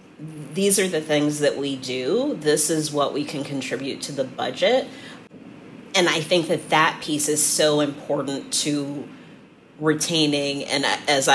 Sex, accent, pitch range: female, American, 140-175 Hz